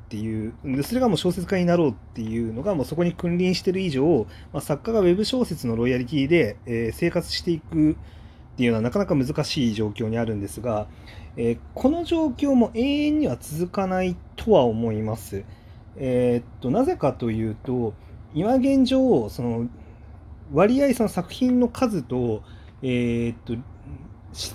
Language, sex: Japanese, male